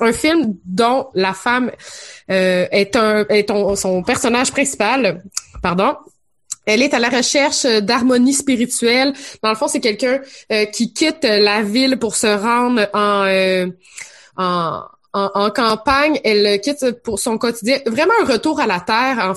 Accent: Canadian